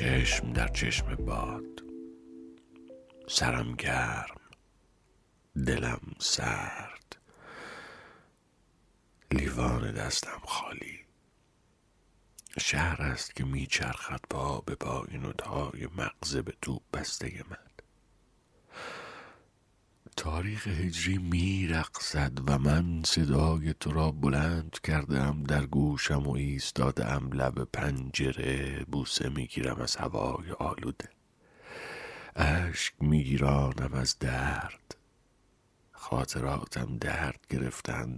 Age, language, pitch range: 50-69, Persian, 65-80 Hz